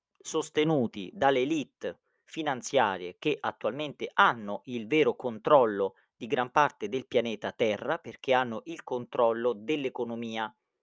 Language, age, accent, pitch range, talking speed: Italian, 40-59, native, 120-145 Hz, 115 wpm